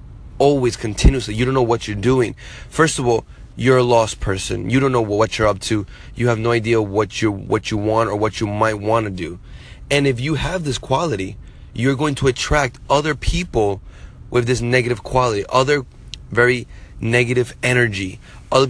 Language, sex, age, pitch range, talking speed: English, male, 20-39, 105-130 Hz, 190 wpm